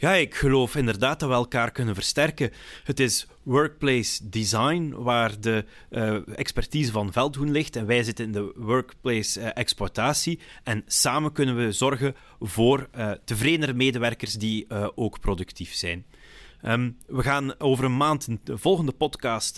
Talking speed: 155 wpm